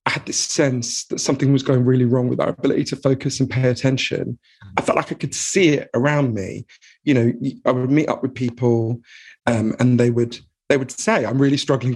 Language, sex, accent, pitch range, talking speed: English, male, British, 120-135 Hz, 225 wpm